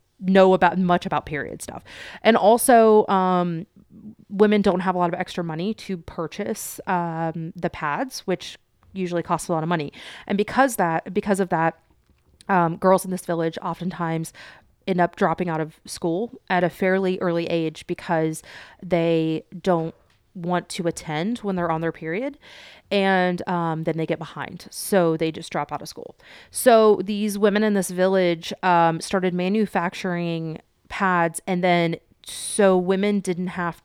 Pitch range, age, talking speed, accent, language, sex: 165-195 Hz, 30-49, 165 wpm, American, English, female